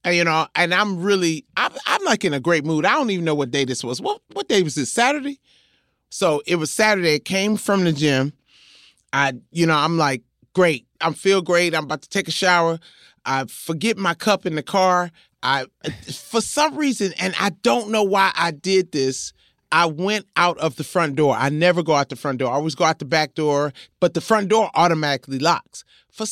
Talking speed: 225 wpm